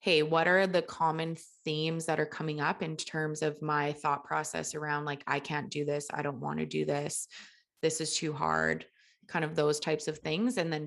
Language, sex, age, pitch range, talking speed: English, female, 20-39, 150-170 Hz, 220 wpm